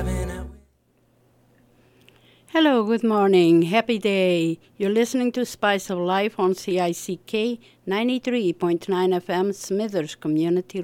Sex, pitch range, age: female, 160-210 Hz, 50-69